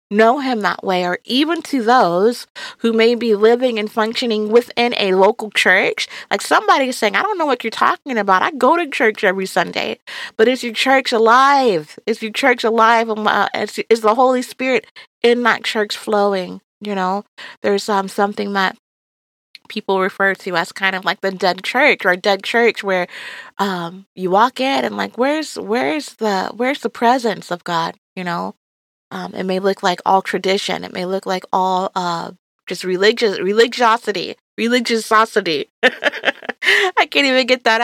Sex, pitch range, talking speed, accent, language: female, 190-240 Hz, 175 wpm, American, English